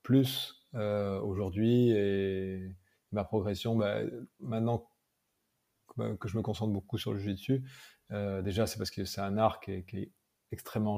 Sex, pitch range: male, 105-120 Hz